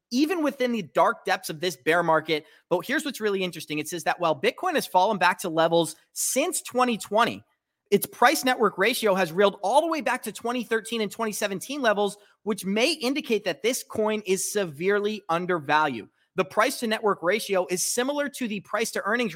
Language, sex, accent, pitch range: English, male, American, 185-235 Hz